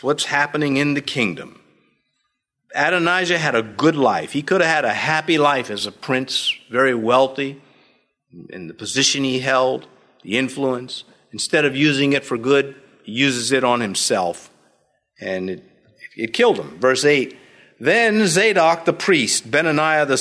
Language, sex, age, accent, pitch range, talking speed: English, male, 50-69, American, 125-180 Hz, 155 wpm